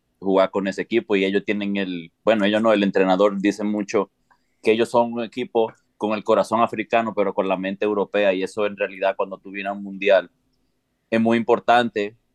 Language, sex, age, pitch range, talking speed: Spanish, male, 30-49, 100-120 Hz, 205 wpm